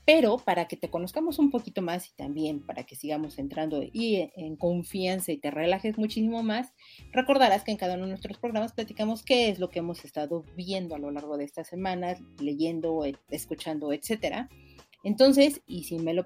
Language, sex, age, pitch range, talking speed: Spanish, female, 40-59, 160-210 Hz, 190 wpm